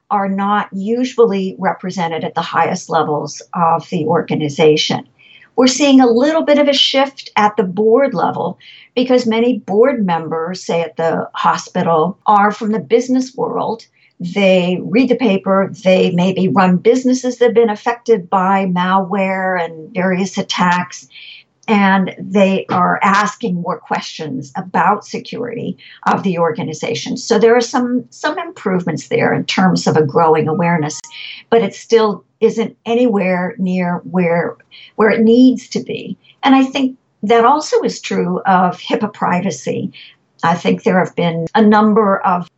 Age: 50-69